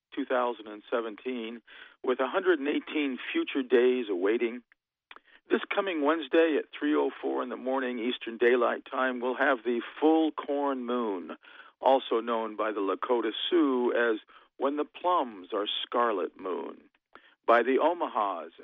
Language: English